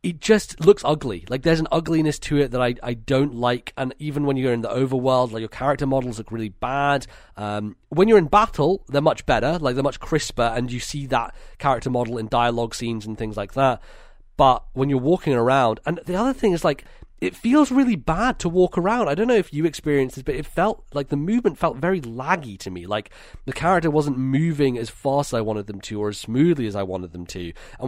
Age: 30-49